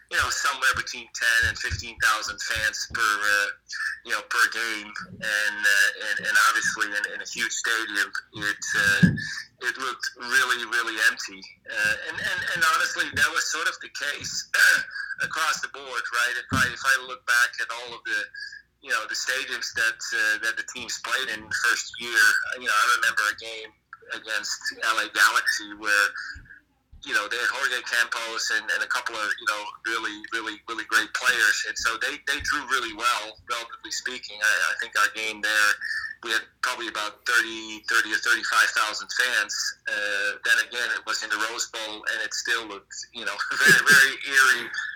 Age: 30-49